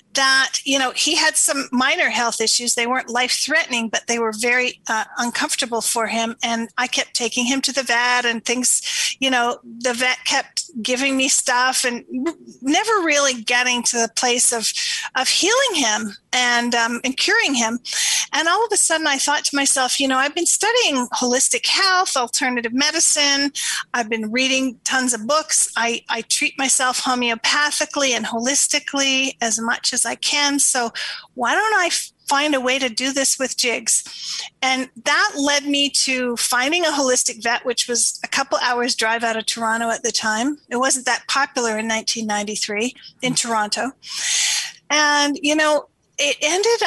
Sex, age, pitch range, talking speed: female, 40-59, 235-290 Hz, 175 wpm